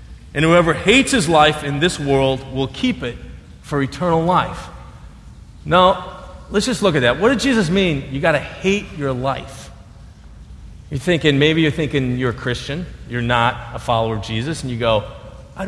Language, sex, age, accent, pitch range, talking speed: English, male, 40-59, American, 120-185 Hz, 185 wpm